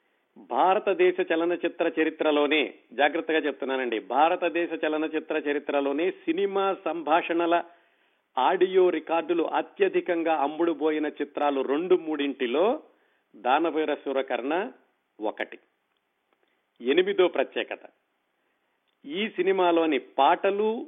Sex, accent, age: male, native, 50-69